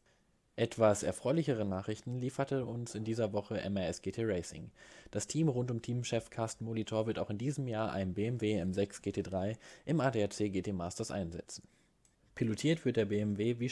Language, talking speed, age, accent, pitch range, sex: German, 160 wpm, 20-39, German, 105-125 Hz, male